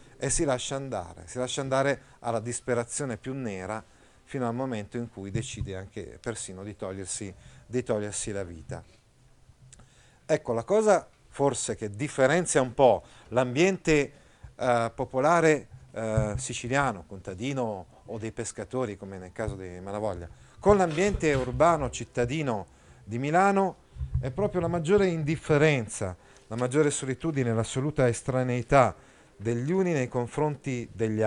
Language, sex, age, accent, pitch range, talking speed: Italian, male, 40-59, native, 105-135 Hz, 125 wpm